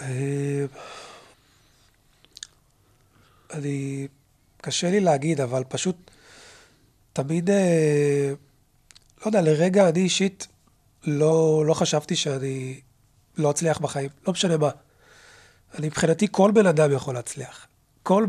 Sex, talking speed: male, 100 wpm